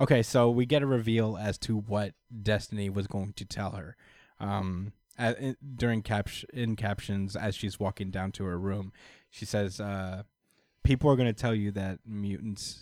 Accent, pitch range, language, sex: American, 95-115 Hz, English, male